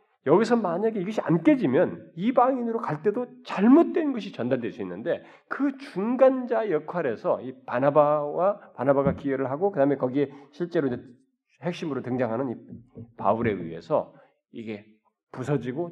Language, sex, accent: Korean, male, native